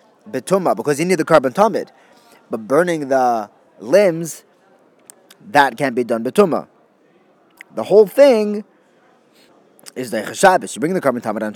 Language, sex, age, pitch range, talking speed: English, male, 20-39, 145-210 Hz, 135 wpm